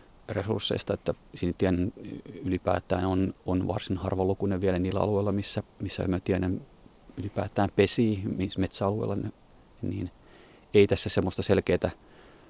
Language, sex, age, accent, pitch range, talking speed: Finnish, male, 30-49, native, 90-105 Hz, 105 wpm